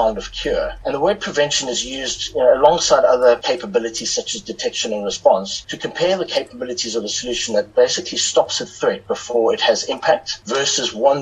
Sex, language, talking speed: male, English, 180 wpm